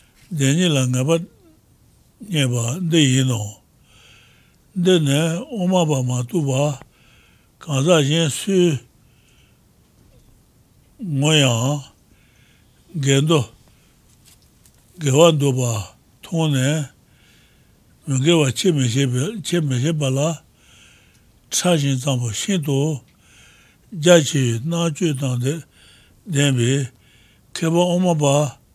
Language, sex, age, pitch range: English, male, 60-79, 125-160 Hz